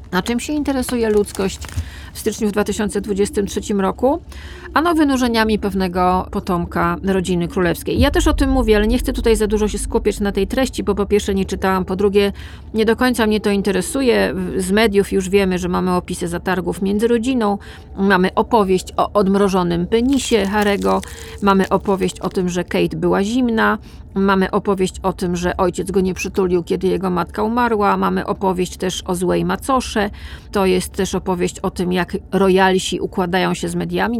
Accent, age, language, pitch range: native, 40-59, Polish, 185-215 Hz